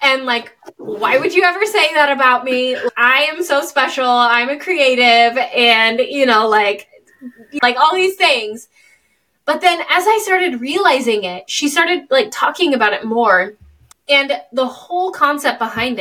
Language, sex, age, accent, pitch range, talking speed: English, female, 20-39, American, 220-290 Hz, 165 wpm